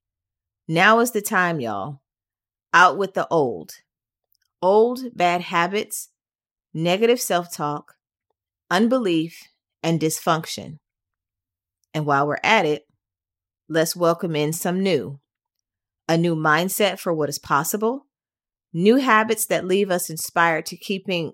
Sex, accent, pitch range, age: female, American, 145-200 Hz, 30-49